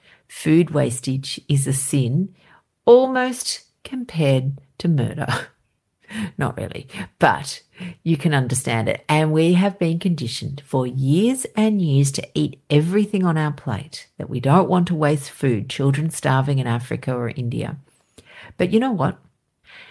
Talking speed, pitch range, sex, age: 145 wpm, 130-180 Hz, female, 50-69